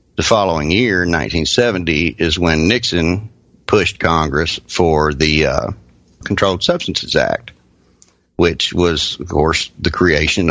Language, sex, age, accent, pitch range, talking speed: English, male, 50-69, American, 80-115 Hz, 120 wpm